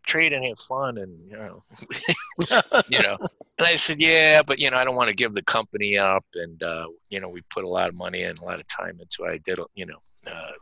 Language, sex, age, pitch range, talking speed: English, male, 50-69, 90-120 Hz, 260 wpm